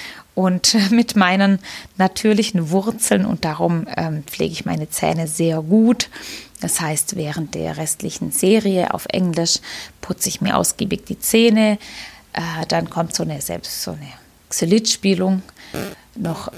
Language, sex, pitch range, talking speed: English, female, 180-230 Hz, 130 wpm